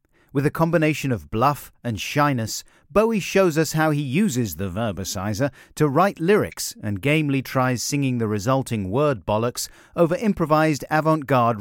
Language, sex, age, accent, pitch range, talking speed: English, male, 40-59, British, 110-155 Hz, 150 wpm